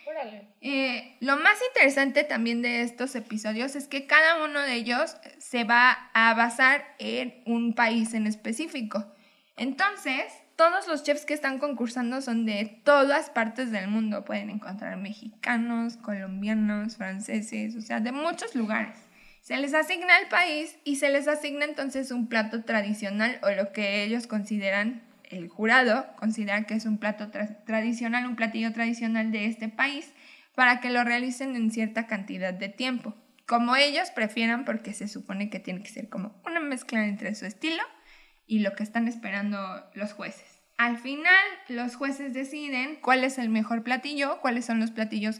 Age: 10-29